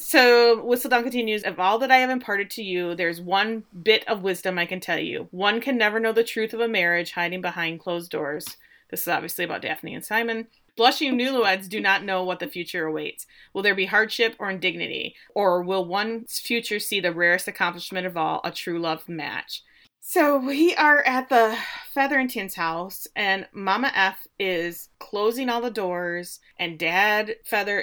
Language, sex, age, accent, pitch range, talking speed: English, female, 30-49, American, 175-225 Hz, 190 wpm